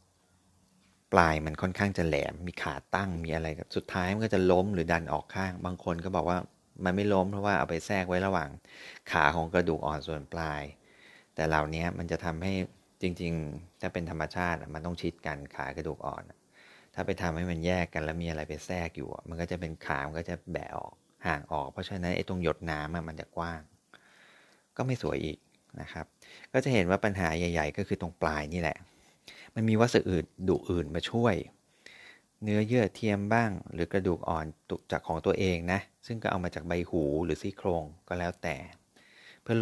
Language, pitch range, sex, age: Thai, 80-95 Hz, male, 30-49